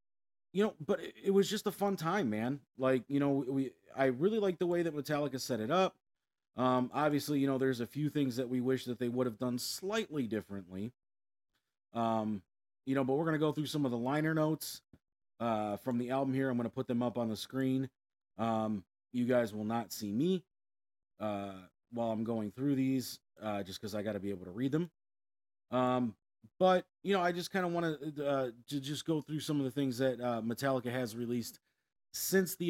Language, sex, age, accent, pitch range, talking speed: English, male, 30-49, American, 115-150 Hz, 220 wpm